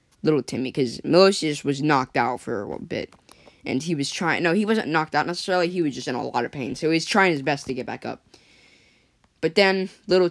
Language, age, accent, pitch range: English, 10-29, American, 135-170 Hz